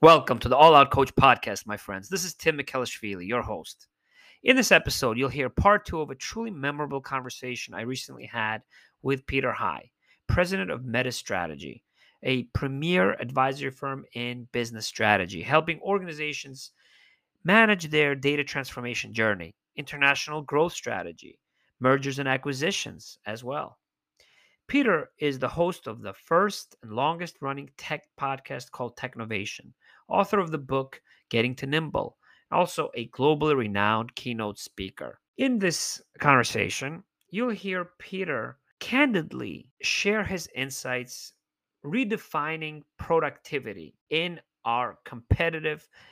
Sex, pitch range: male, 120-160 Hz